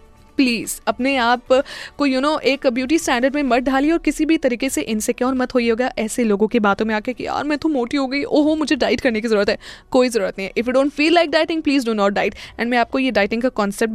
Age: 20-39